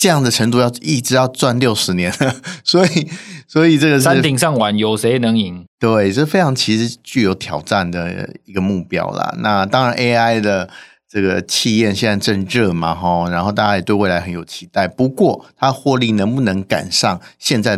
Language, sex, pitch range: Chinese, male, 100-130 Hz